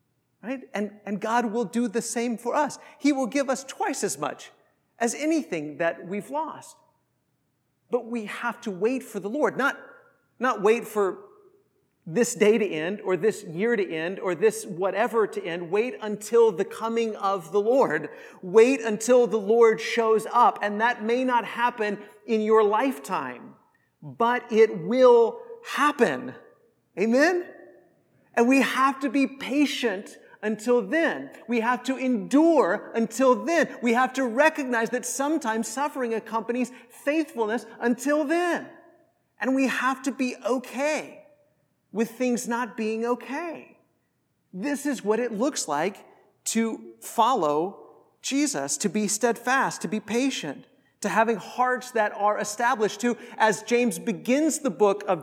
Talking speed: 150 wpm